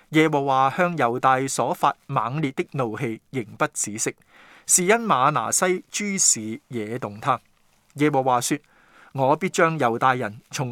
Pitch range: 125-165 Hz